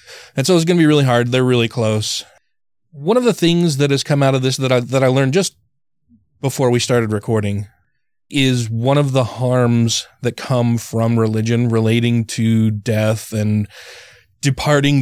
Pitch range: 115-140 Hz